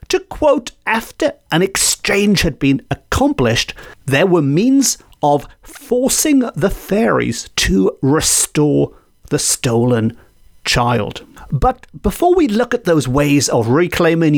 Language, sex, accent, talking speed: English, male, British, 120 wpm